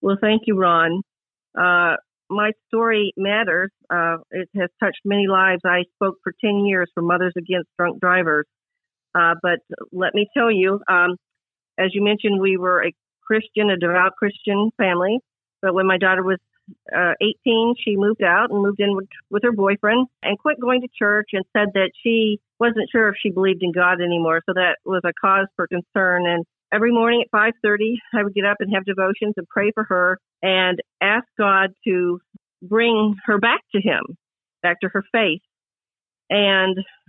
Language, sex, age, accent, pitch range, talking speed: English, female, 50-69, American, 180-210 Hz, 185 wpm